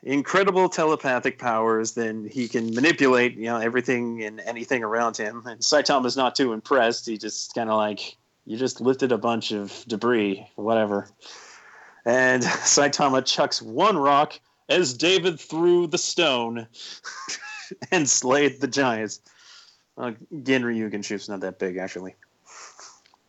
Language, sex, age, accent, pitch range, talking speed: English, male, 30-49, American, 110-135 Hz, 140 wpm